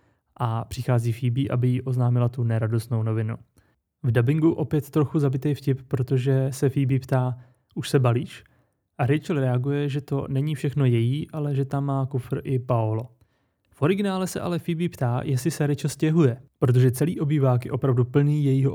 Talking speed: 175 wpm